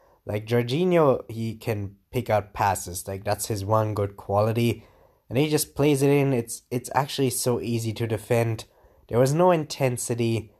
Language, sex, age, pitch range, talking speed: English, male, 20-39, 110-135 Hz, 170 wpm